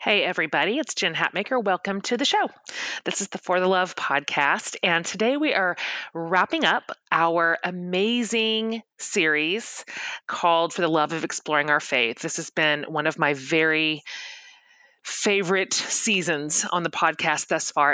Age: 30-49